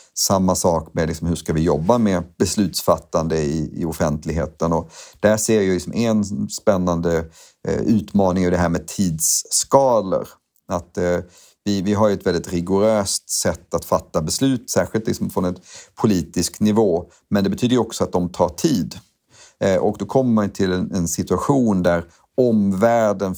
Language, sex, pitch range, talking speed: Swedish, male, 85-105 Hz, 165 wpm